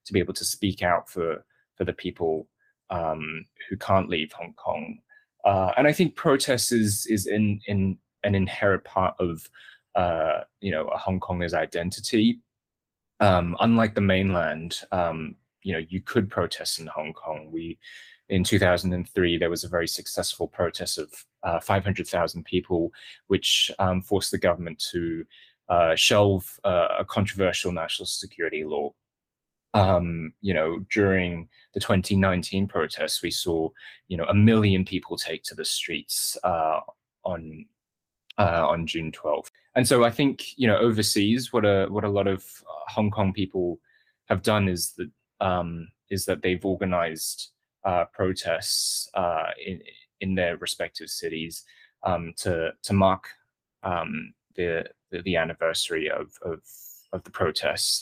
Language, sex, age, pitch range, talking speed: English, male, 20-39, 85-105 Hz, 155 wpm